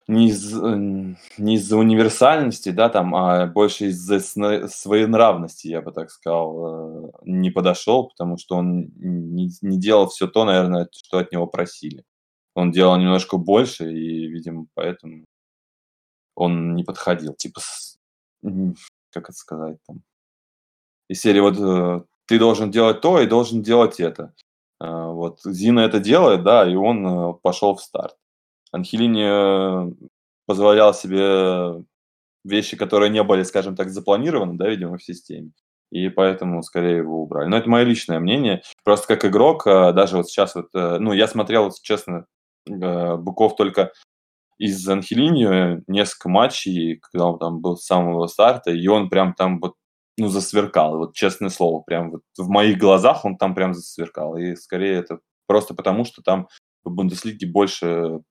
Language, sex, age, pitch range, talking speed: Russian, male, 20-39, 85-105 Hz, 150 wpm